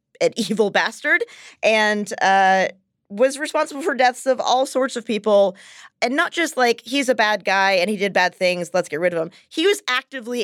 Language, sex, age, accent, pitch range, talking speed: English, female, 20-39, American, 190-235 Hz, 200 wpm